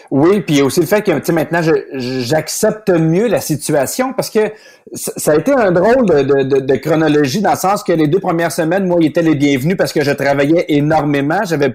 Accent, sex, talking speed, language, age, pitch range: Canadian, male, 210 wpm, French, 30-49, 145-200 Hz